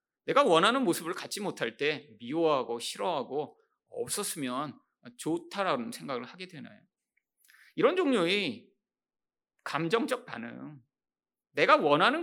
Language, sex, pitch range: Korean, male, 185-290 Hz